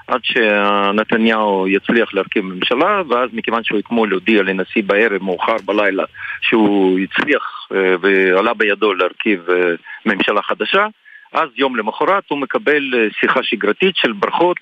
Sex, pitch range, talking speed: male, 100-145 Hz, 125 wpm